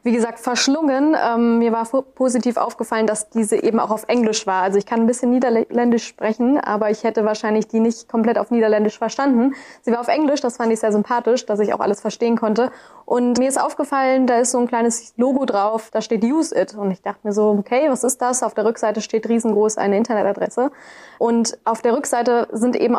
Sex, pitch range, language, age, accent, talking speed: female, 215-240 Hz, German, 20-39, German, 220 wpm